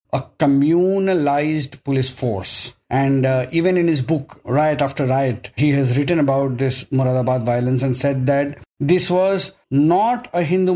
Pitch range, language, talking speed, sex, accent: 145-195 Hz, English, 155 wpm, male, Indian